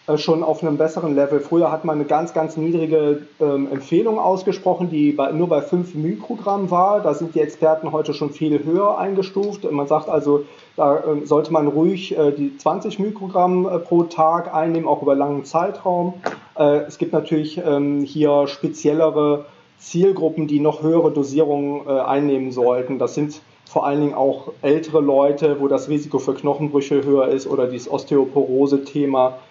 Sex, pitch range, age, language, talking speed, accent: male, 140-160 Hz, 30-49, German, 165 wpm, German